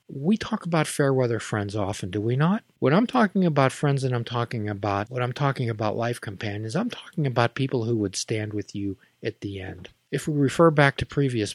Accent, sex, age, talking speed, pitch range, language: American, male, 50-69, 220 wpm, 110-155 Hz, English